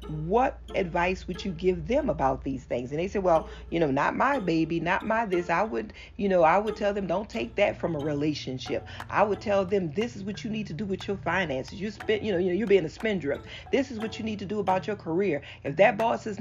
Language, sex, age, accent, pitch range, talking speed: English, female, 40-59, American, 150-210 Hz, 265 wpm